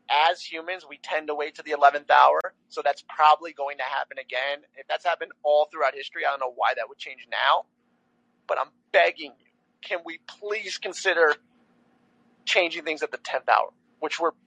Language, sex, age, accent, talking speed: English, male, 30-49, American, 195 wpm